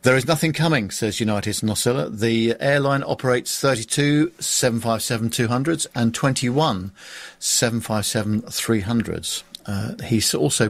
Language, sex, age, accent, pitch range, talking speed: English, male, 50-69, British, 110-135 Hz, 110 wpm